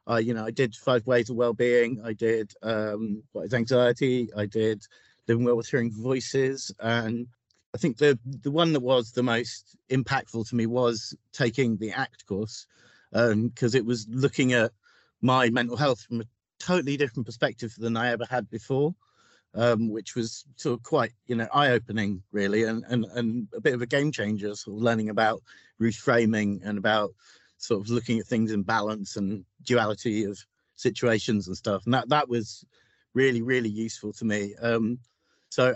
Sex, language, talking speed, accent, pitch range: male, English, 185 wpm, British, 110-130 Hz